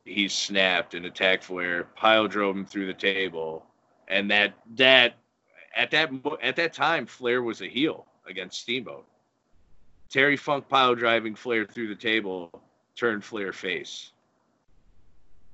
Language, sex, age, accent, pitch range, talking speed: English, male, 30-49, American, 95-115 Hz, 140 wpm